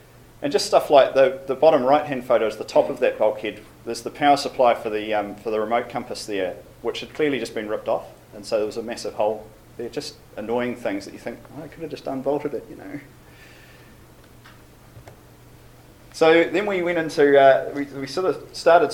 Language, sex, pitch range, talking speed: English, male, 120-140 Hz, 215 wpm